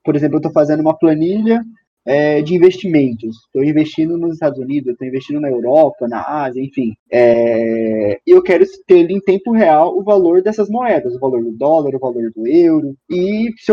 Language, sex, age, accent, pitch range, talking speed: Portuguese, male, 20-39, Brazilian, 150-210 Hz, 190 wpm